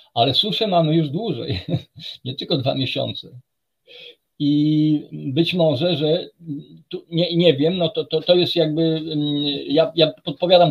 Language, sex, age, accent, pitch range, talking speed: Polish, male, 50-69, native, 140-170 Hz, 145 wpm